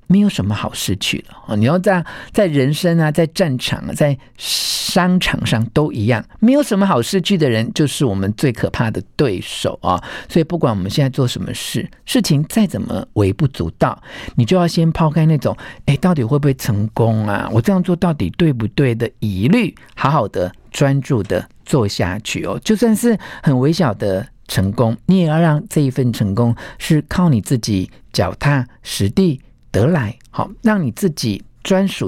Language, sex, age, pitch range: Chinese, male, 50-69, 110-160 Hz